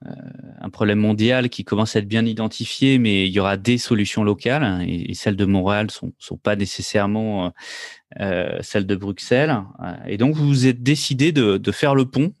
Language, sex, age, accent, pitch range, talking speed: French, male, 30-49, French, 105-130 Hz, 215 wpm